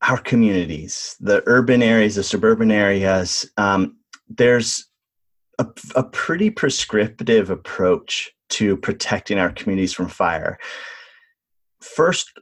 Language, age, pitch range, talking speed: English, 30-49, 95-125 Hz, 105 wpm